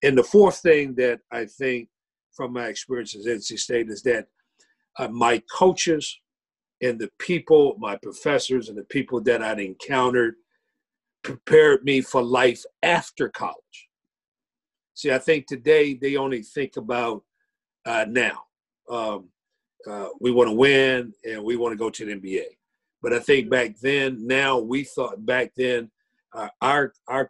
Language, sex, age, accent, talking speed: English, male, 50-69, American, 160 wpm